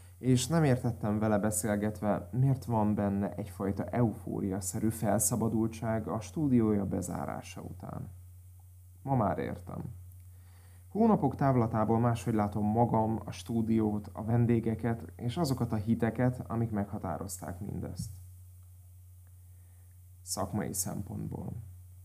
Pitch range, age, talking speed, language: 90-120 Hz, 30-49, 100 wpm, Hungarian